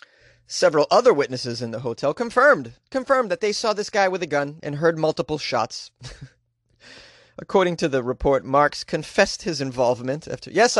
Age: 30-49